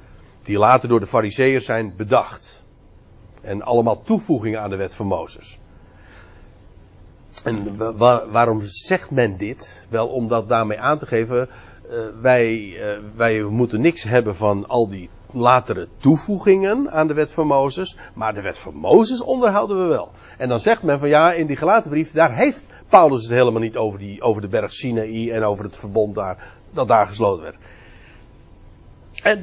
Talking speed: 170 wpm